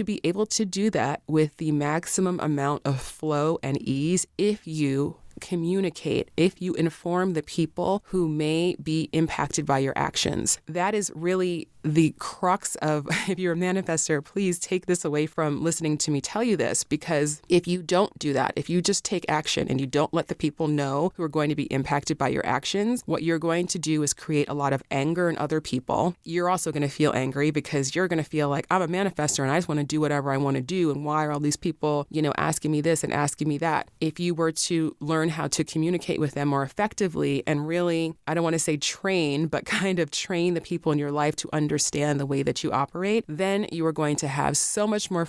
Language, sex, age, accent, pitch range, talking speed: English, female, 30-49, American, 150-180 Hz, 230 wpm